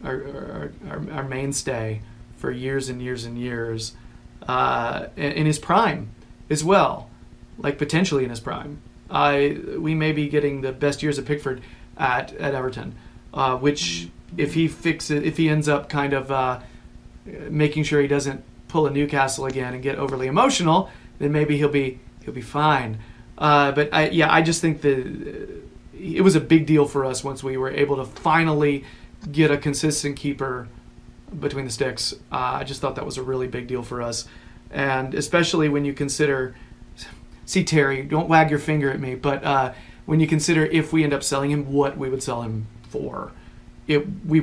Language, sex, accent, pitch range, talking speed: English, male, American, 130-155 Hz, 185 wpm